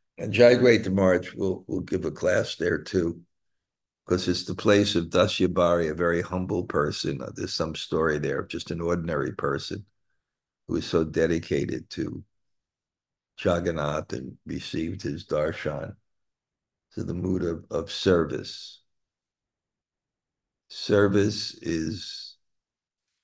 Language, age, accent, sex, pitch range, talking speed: English, 60-79, American, male, 85-100 Hz, 125 wpm